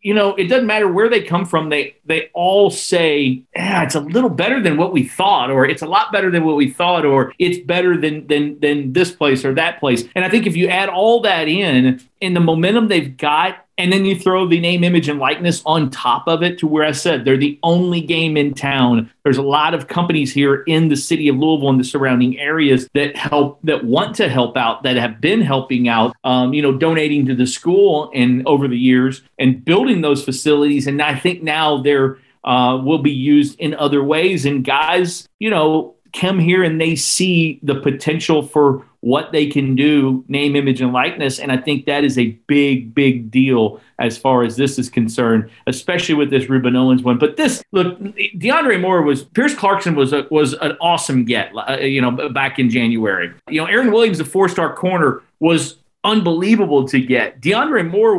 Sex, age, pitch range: male, 40-59, 135-175 Hz